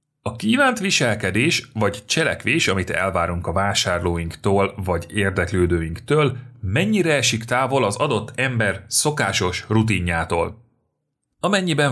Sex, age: male, 30-49